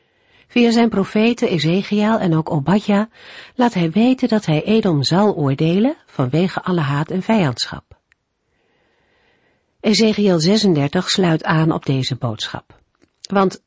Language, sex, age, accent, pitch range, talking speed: Dutch, female, 50-69, Dutch, 150-205 Hz, 125 wpm